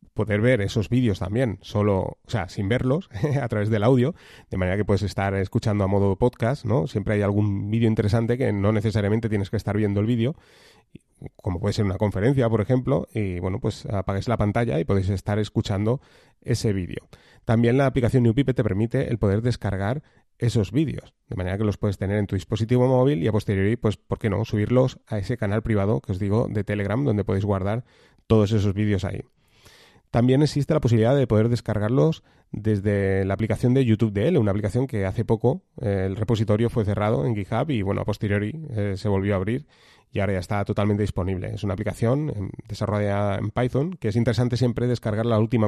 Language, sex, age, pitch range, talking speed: Spanish, male, 30-49, 100-125 Hz, 205 wpm